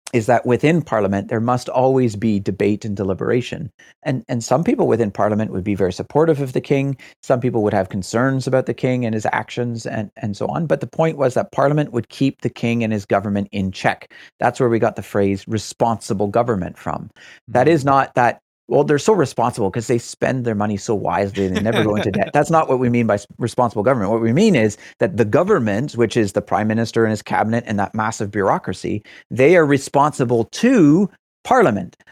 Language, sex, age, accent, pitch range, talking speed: English, male, 40-59, American, 100-130 Hz, 215 wpm